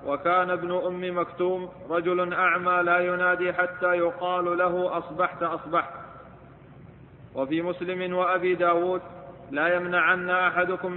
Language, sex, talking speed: Arabic, male, 110 wpm